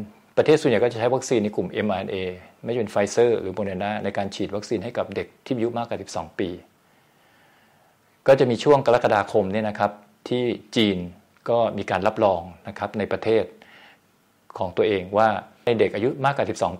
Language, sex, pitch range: Thai, male, 95-115 Hz